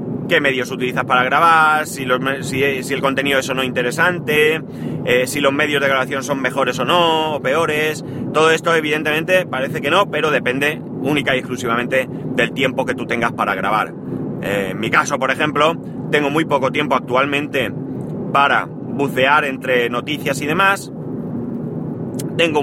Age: 30-49